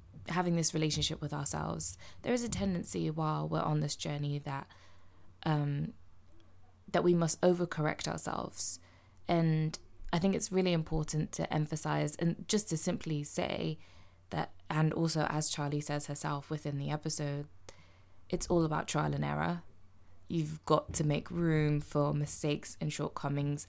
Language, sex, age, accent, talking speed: English, female, 20-39, British, 150 wpm